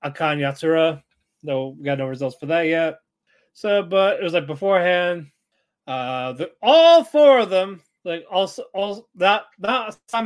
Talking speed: 165 wpm